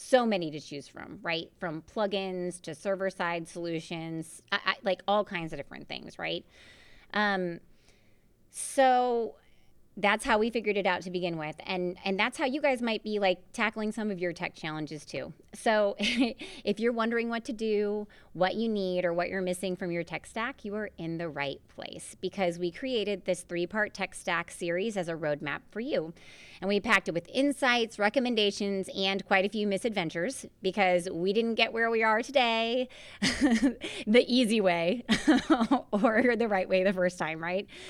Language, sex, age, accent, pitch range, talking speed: English, female, 30-49, American, 170-215 Hz, 180 wpm